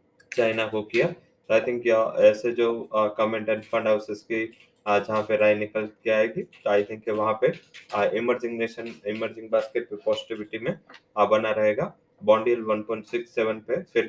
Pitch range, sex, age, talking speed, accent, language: 105-120 Hz, male, 20-39, 160 wpm, Indian, English